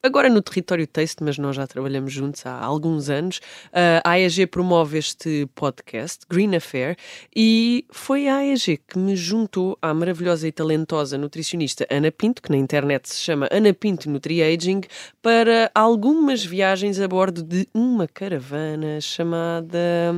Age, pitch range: 20-39, 150-195 Hz